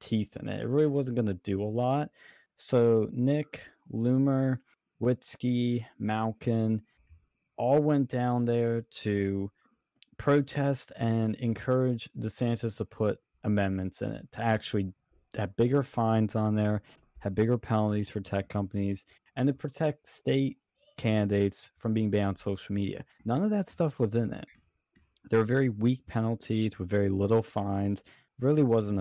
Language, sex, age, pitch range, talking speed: English, male, 20-39, 100-130 Hz, 150 wpm